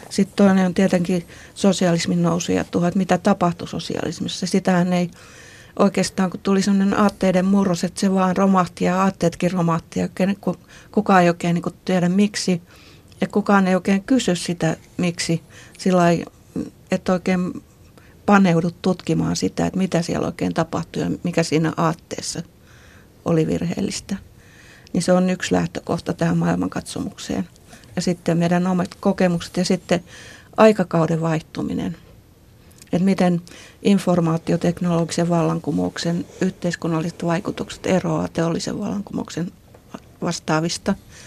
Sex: female